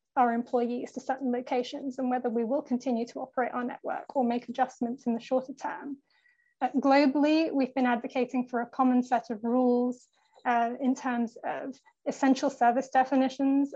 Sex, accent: female, British